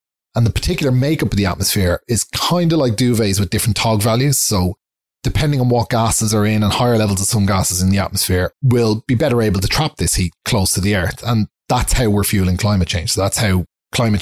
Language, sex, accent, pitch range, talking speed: English, male, Irish, 95-125 Hz, 230 wpm